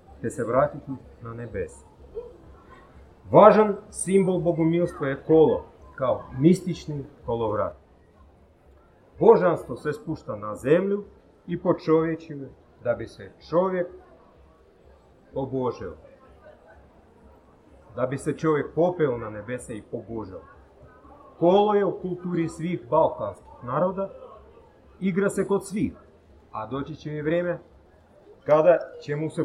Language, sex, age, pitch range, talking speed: Croatian, male, 40-59, 125-185 Hz, 105 wpm